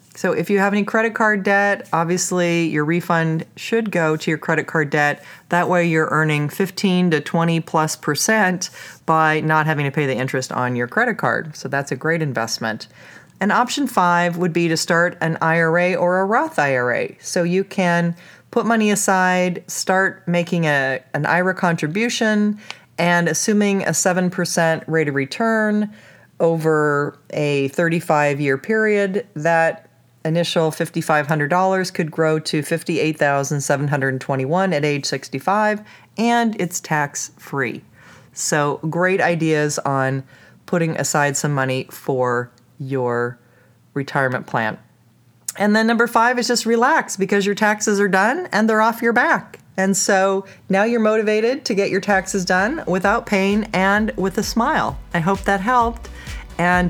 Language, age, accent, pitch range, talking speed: English, 40-59, American, 150-200 Hz, 150 wpm